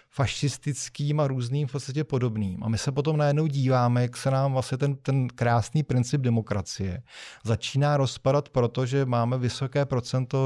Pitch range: 110-135 Hz